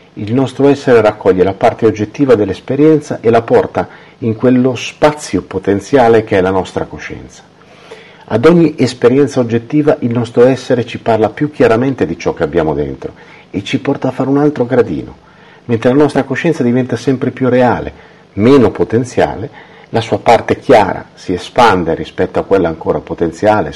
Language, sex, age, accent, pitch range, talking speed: Italian, male, 50-69, native, 105-140 Hz, 165 wpm